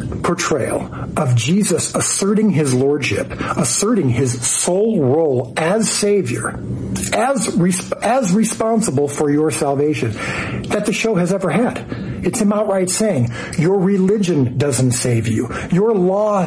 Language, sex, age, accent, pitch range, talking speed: English, male, 50-69, American, 125-185 Hz, 130 wpm